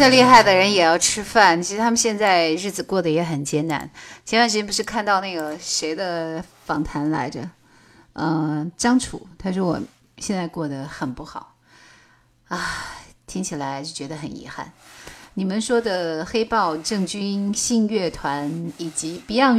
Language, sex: Chinese, female